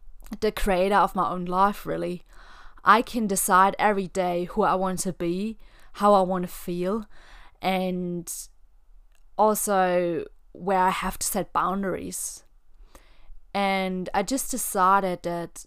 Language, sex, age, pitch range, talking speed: English, female, 20-39, 180-210 Hz, 135 wpm